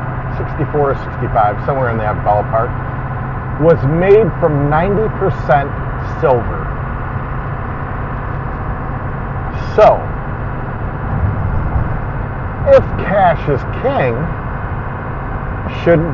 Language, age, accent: English, 50-69, American